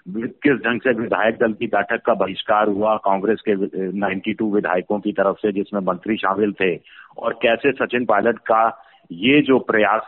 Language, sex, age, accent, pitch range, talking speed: Hindi, male, 50-69, native, 105-125 Hz, 175 wpm